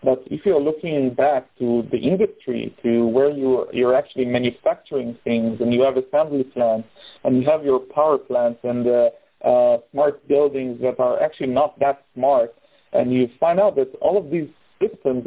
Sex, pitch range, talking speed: male, 125-145 Hz, 180 wpm